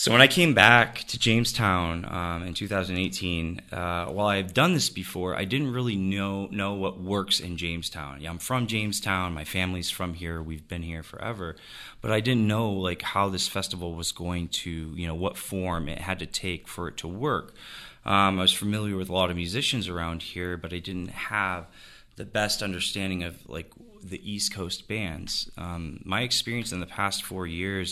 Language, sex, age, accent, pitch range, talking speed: English, male, 20-39, American, 85-95 Hz, 205 wpm